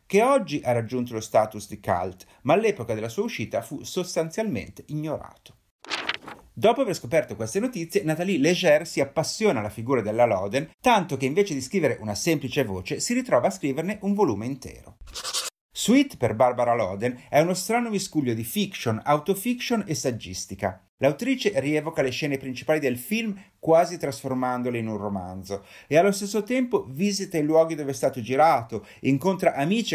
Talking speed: 165 wpm